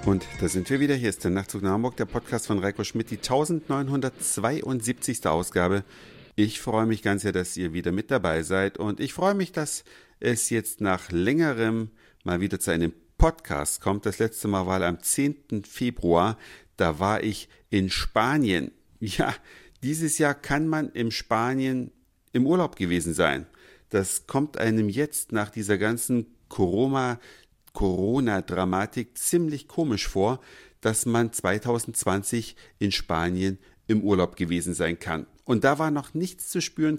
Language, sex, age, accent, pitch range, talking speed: German, male, 50-69, German, 95-130 Hz, 155 wpm